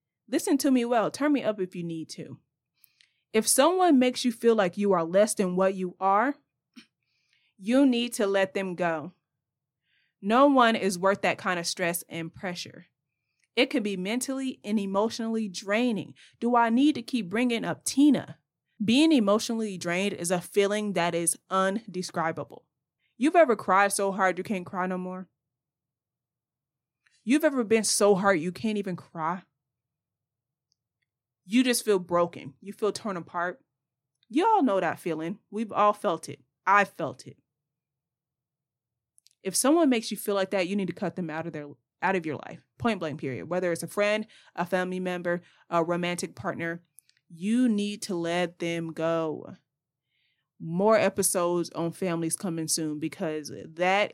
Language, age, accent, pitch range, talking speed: English, 20-39, American, 155-210 Hz, 165 wpm